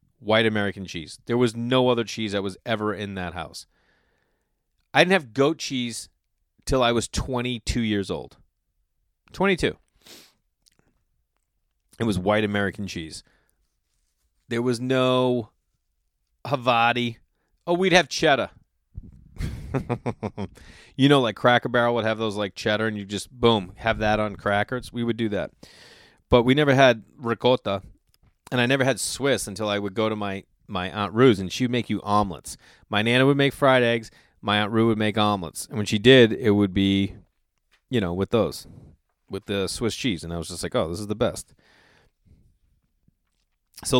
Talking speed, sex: 170 wpm, male